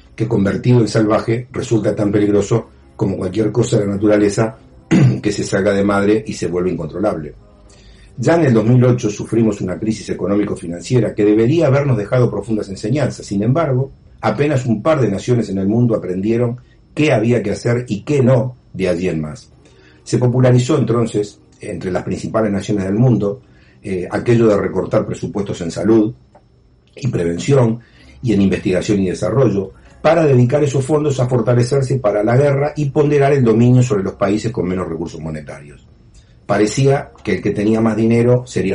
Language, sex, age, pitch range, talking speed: Spanish, male, 50-69, 100-120 Hz, 170 wpm